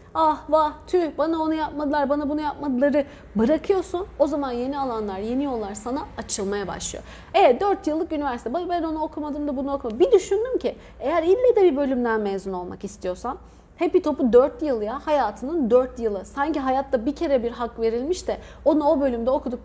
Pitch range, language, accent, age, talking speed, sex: 220-310 Hz, Turkish, native, 30-49, 185 wpm, female